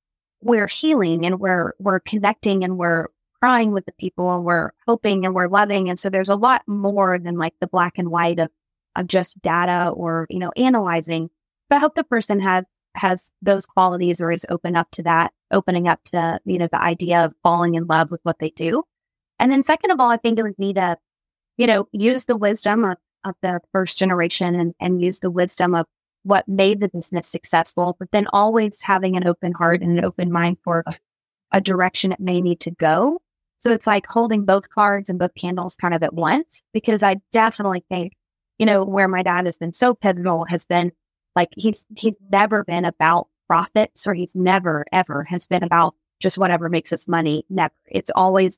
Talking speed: 210 wpm